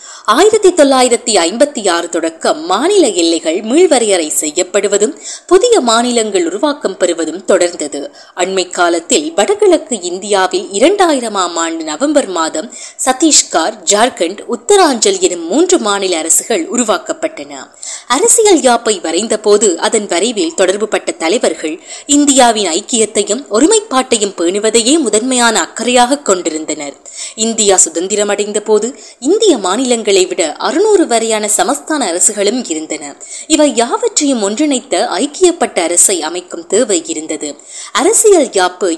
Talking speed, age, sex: 75 wpm, 20-39, female